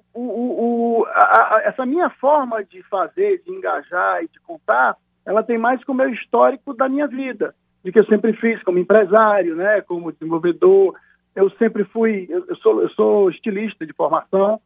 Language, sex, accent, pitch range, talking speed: Portuguese, male, Brazilian, 180-255 Hz, 190 wpm